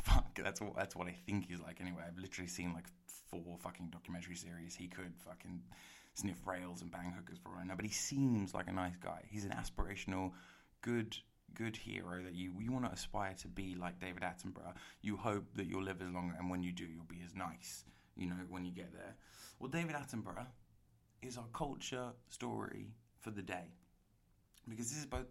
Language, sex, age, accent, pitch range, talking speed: English, male, 20-39, British, 90-120 Hz, 205 wpm